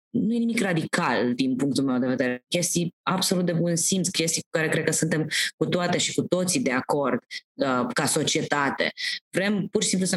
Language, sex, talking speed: Romanian, female, 205 wpm